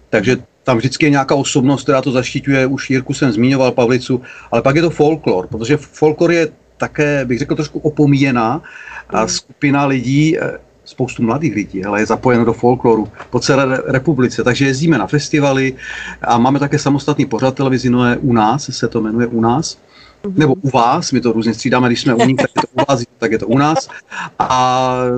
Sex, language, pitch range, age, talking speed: male, Czech, 115-140 Hz, 40-59, 190 wpm